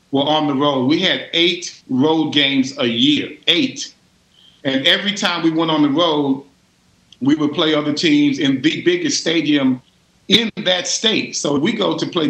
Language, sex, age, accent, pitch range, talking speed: English, male, 40-59, American, 145-180 Hz, 185 wpm